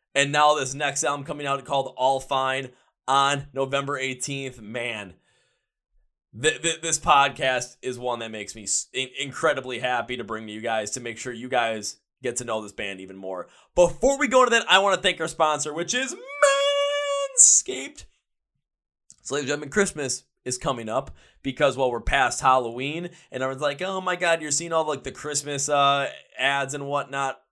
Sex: male